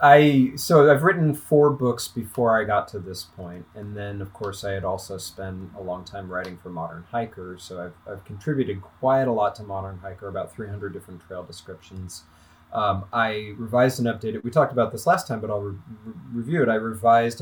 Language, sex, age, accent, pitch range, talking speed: English, male, 30-49, American, 90-115 Hz, 205 wpm